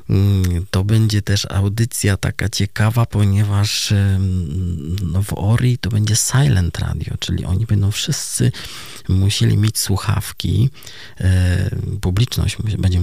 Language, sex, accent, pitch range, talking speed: Polish, male, native, 95-115 Hz, 100 wpm